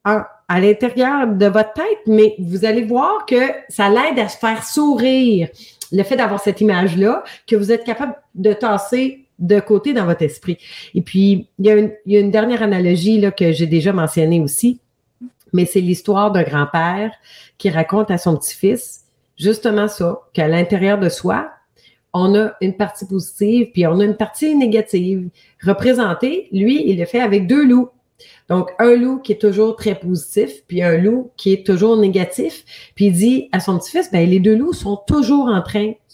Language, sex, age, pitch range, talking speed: French, female, 40-59, 175-225 Hz, 190 wpm